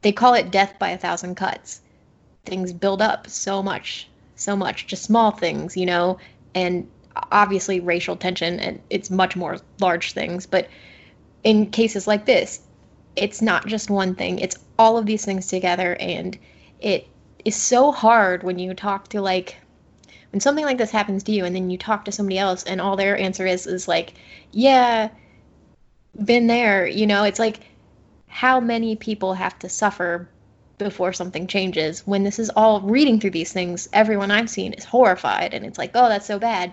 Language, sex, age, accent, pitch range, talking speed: English, female, 20-39, American, 185-220 Hz, 185 wpm